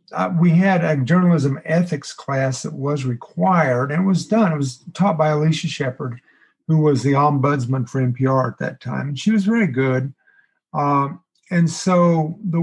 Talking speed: 180 wpm